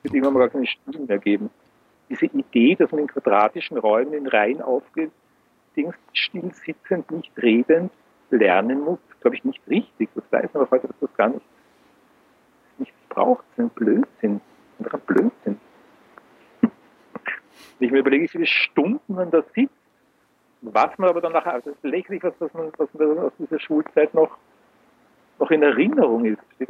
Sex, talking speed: male, 170 wpm